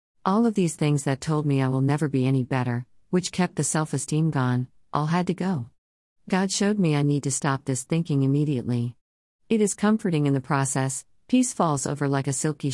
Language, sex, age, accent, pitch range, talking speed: English, female, 50-69, American, 130-180 Hz, 205 wpm